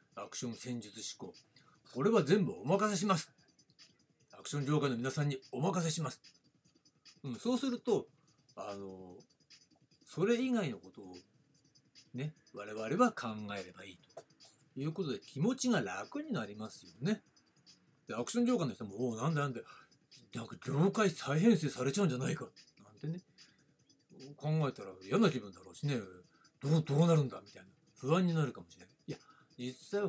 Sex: male